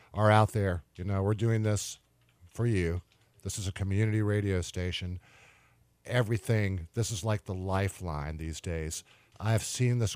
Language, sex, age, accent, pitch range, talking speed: English, male, 50-69, American, 90-110 Hz, 165 wpm